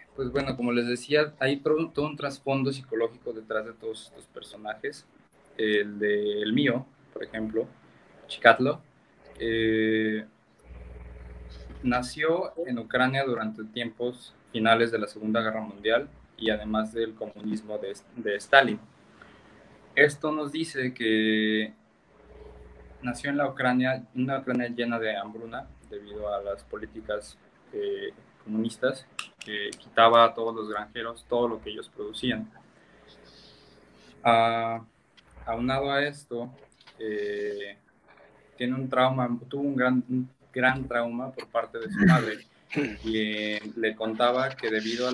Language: Spanish